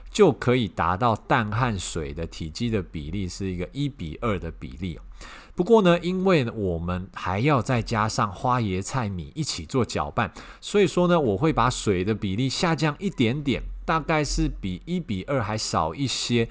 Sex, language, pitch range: male, Chinese, 95-140 Hz